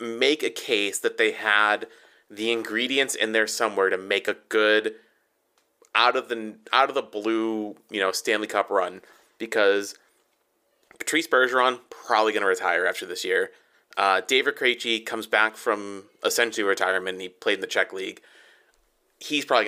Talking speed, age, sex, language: 160 wpm, 30-49, male, English